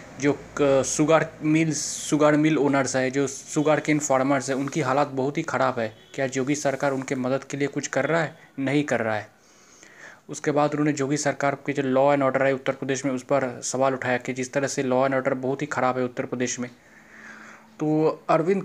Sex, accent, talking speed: male, native, 220 wpm